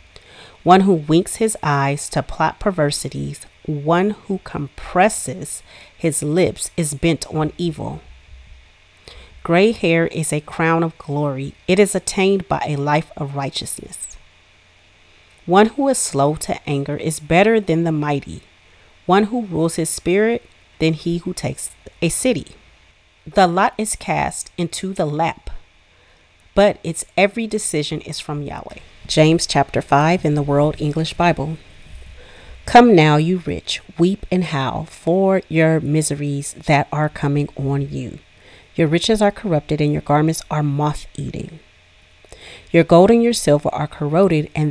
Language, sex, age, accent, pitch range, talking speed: English, female, 30-49, American, 140-175 Hz, 145 wpm